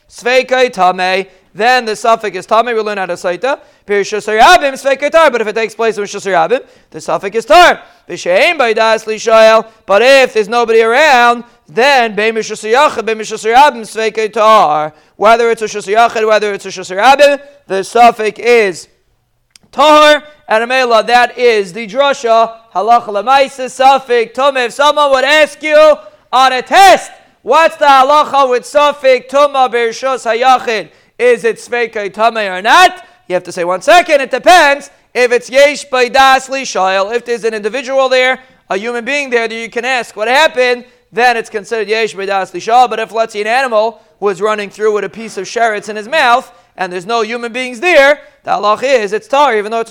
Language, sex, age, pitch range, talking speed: English, male, 40-59, 215-270 Hz, 180 wpm